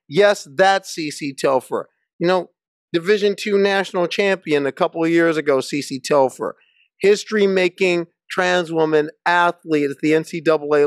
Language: English